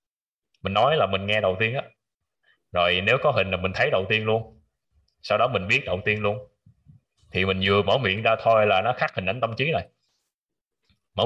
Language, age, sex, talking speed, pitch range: Vietnamese, 20-39, male, 220 wpm, 90-110 Hz